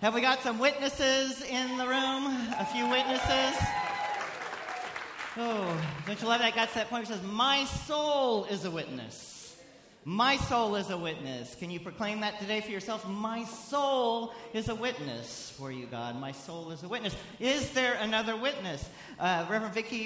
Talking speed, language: 185 wpm, English